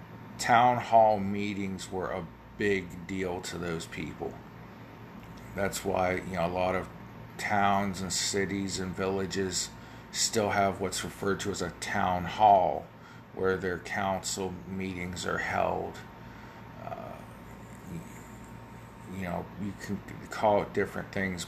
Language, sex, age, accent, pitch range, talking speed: English, male, 40-59, American, 90-100 Hz, 130 wpm